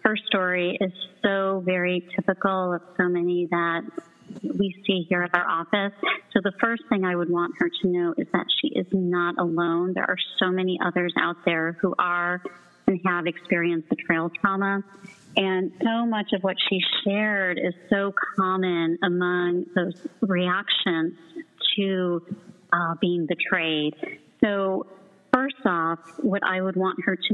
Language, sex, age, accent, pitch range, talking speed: English, female, 30-49, American, 175-200 Hz, 160 wpm